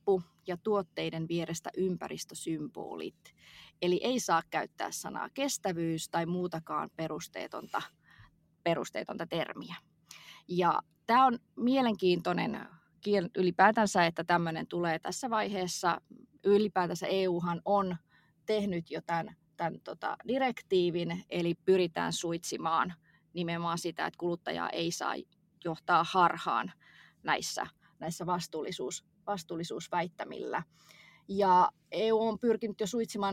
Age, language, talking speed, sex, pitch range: 20-39, Finnish, 100 wpm, female, 170-200 Hz